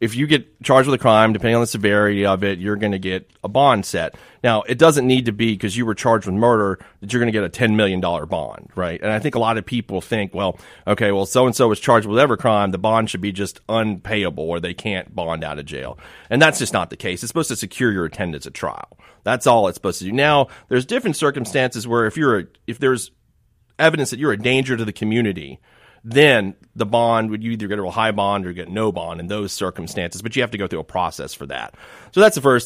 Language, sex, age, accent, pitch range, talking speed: English, male, 30-49, American, 100-120 Hz, 255 wpm